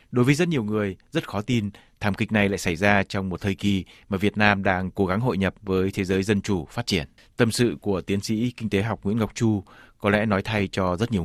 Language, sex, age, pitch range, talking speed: Vietnamese, male, 20-39, 95-115 Hz, 270 wpm